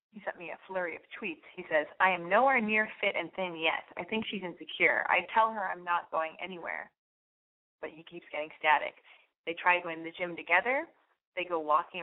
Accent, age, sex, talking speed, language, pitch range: American, 20-39, female, 215 wpm, English, 170-245 Hz